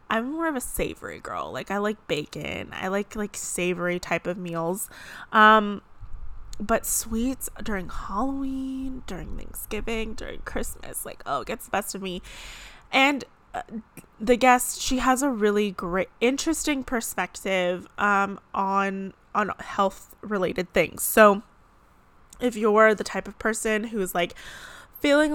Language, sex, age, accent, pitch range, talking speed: English, female, 20-39, American, 190-240 Hz, 145 wpm